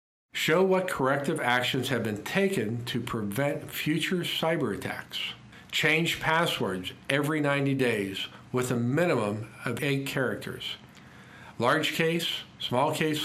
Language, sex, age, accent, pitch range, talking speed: English, male, 50-69, American, 115-150 Hz, 120 wpm